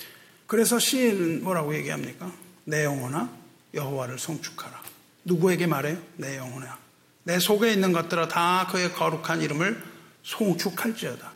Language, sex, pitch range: Korean, male, 155-185 Hz